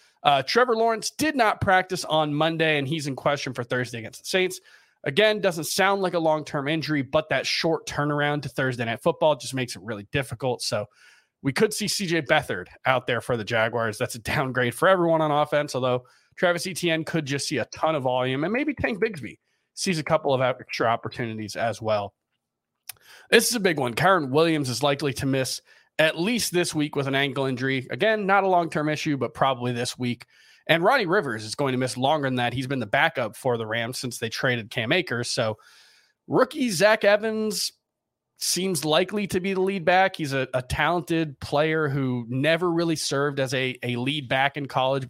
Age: 30-49